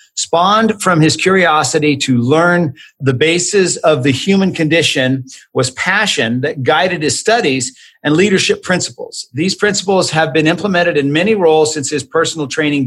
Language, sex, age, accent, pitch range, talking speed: English, male, 50-69, American, 145-175 Hz, 155 wpm